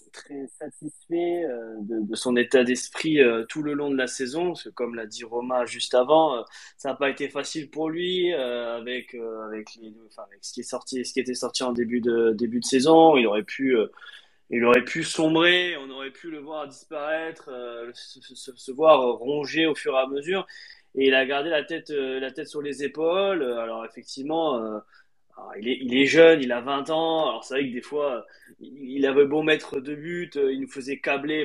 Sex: male